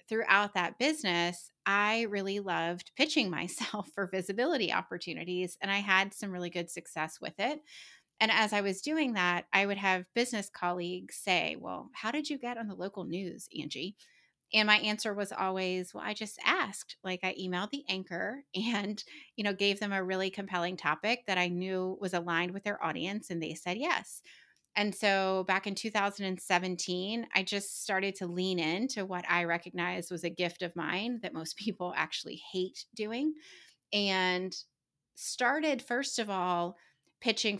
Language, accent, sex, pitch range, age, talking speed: English, American, female, 180-215 Hz, 30-49, 170 wpm